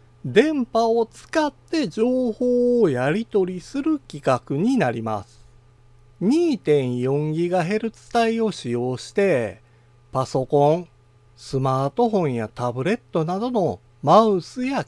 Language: Japanese